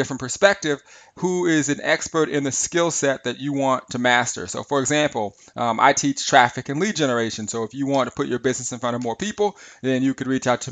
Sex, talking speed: male, 245 wpm